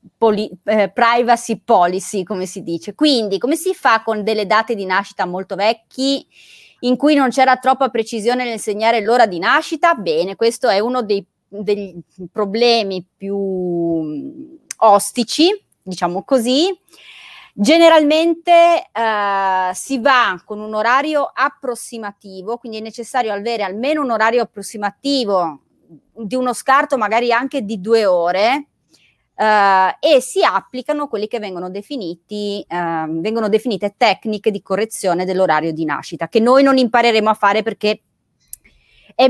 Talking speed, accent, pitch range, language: 130 wpm, native, 195-255 Hz, Italian